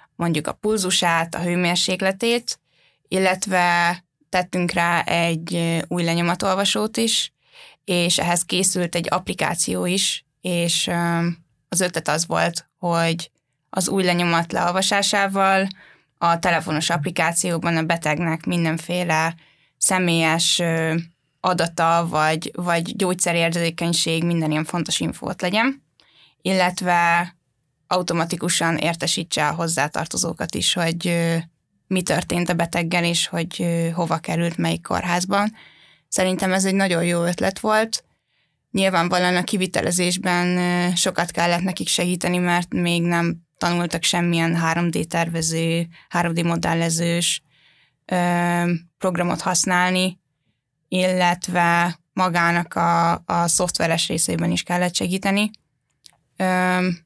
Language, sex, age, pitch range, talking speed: Hungarian, female, 10-29, 165-180 Hz, 105 wpm